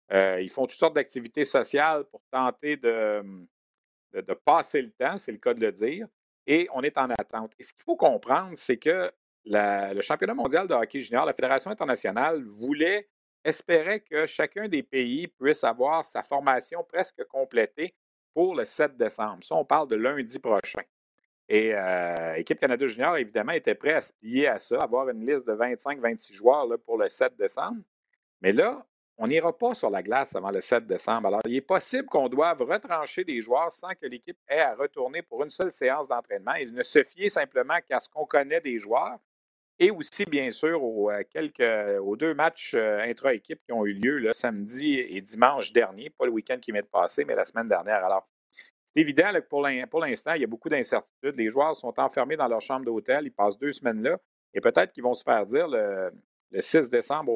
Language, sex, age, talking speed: French, male, 50-69, 205 wpm